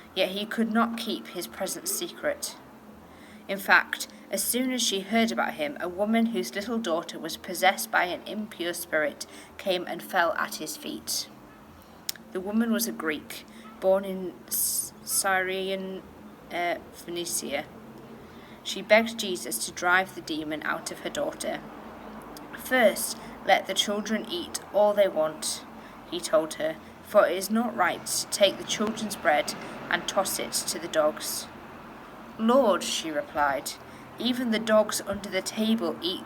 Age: 30-49